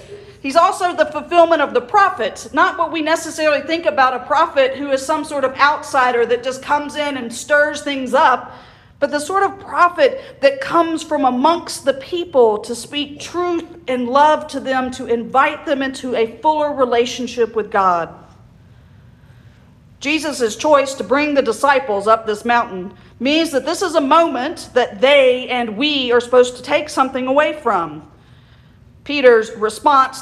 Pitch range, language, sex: 235-305 Hz, English, female